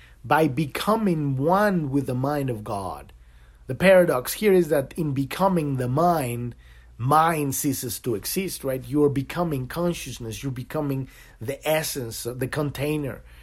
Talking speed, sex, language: 145 wpm, male, English